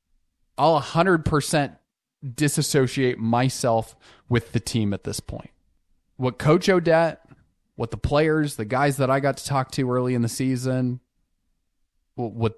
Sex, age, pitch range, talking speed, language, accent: male, 20-39, 110-135 Hz, 140 wpm, English, American